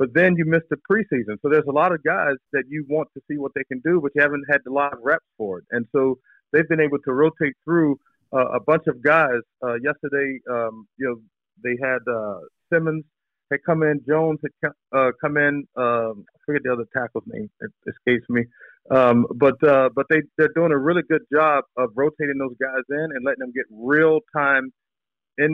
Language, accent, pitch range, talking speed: English, American, 125-150 Hz, 225 wpm